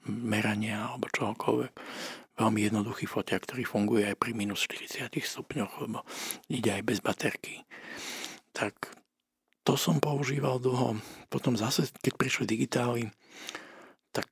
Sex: male